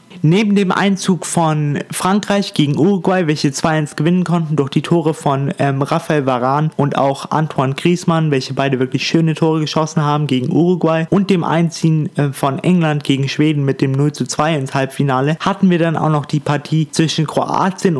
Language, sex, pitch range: German, male, 145-180 Hz